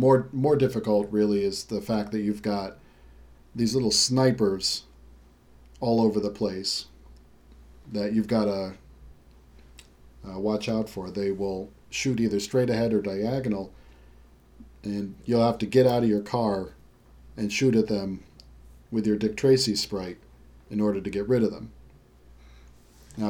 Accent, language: American, English